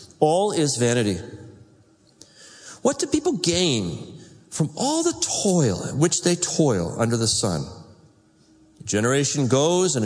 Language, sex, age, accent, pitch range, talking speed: English, male, 40-59, American, 115-165 Hz, 130 wpm